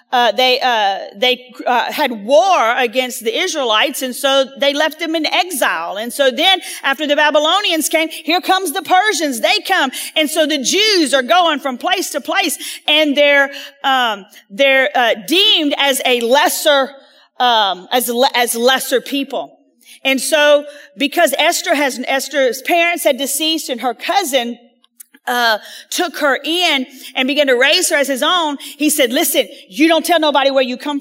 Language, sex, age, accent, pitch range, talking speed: English, female, 40-59, American, 270-335 Hz, 170 wpm